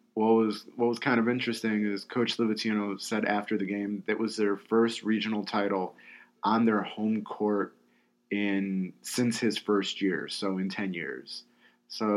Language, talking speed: English, 170 wpm